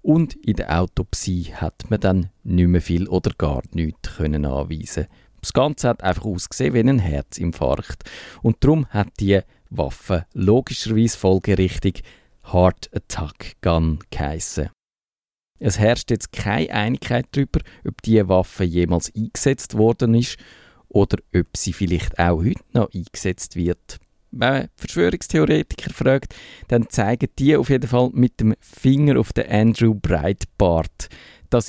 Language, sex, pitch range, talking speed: German, male, 85-120 Hz, 140 wpm